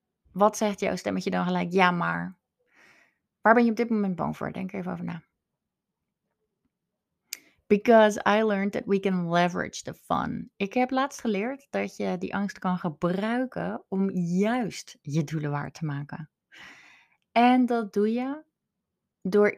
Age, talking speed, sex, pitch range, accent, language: 20-39, 155 wpm, female, 190-255 Hz, Dutch, Dutch